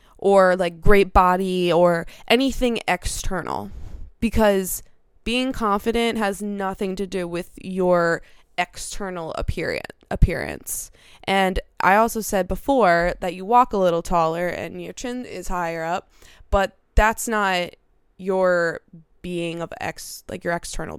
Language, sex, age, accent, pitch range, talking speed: English, female, 20-39, American, 175-200 Hz, 130 wpm